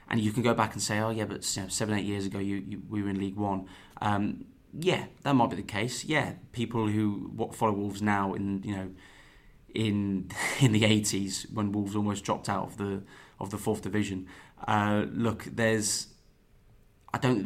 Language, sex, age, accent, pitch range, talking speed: English, male, 20-39, British, 100-115 Hz, 205 wpm